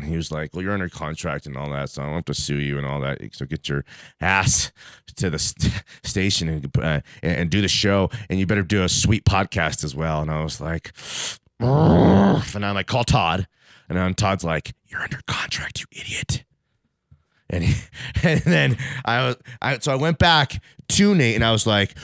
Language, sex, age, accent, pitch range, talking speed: English, male, 30-49, American, 75-130 Hz, 215 wpm